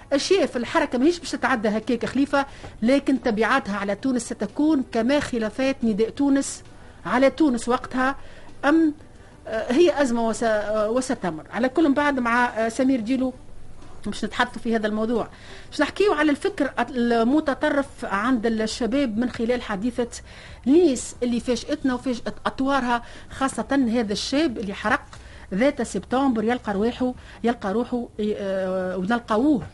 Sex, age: female, 40-59